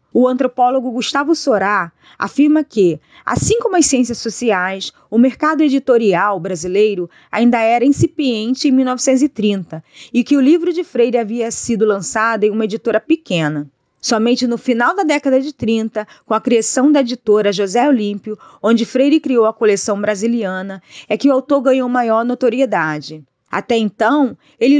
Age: 20-39